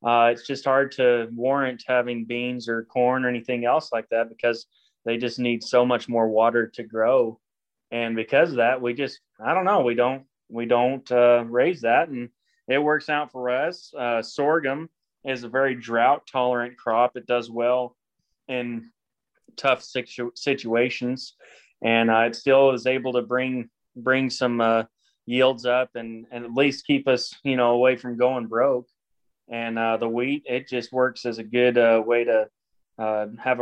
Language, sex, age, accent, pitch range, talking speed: English, male, 20-39, American, 120-130 Hz, 180 wpm